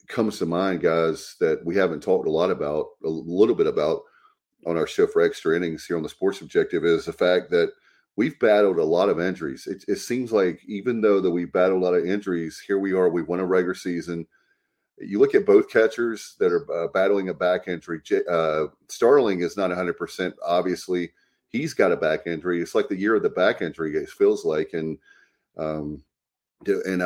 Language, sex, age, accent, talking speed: English, male, 40-59, American, 210 wpm